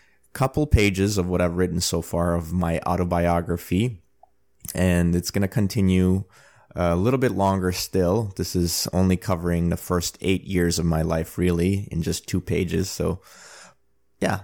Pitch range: 85-105 Hz